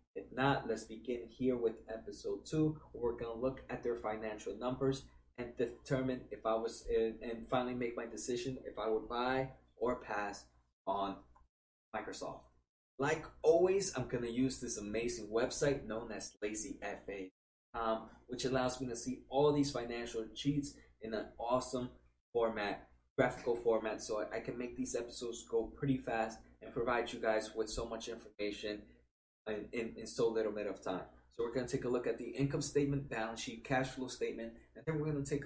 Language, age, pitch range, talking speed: English, 20-39, 110-135 Hz, 180 wpm